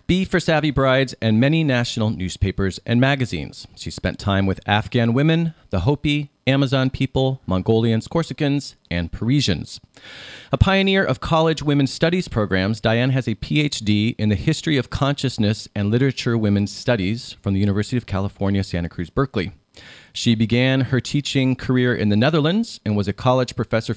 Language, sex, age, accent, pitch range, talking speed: English, male, 40-59, American, 100-135 Hz, 165 wpm